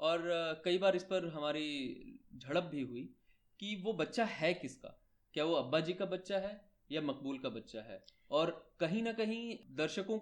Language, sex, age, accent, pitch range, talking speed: Hindi, male, 20-39, native, 155-215 Hz, 180 wpm